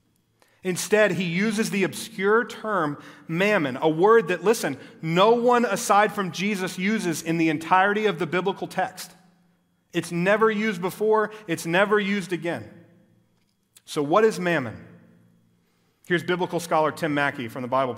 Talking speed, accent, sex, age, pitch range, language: 145 wpm, American, male, 40-59, 150-210 Hz, English